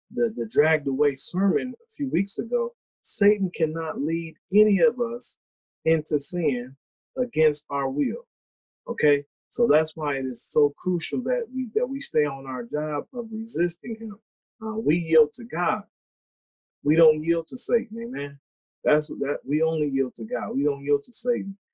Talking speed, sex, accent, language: 175 wpm, male, American, English